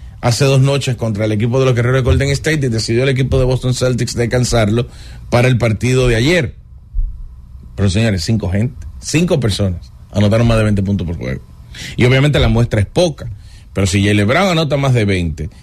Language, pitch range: English, 105-135 Hz